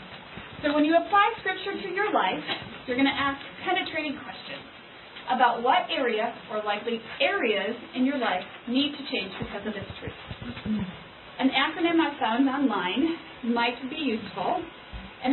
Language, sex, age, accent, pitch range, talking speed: English, female, 30-49, American, 235-310 Hz, 155 wpm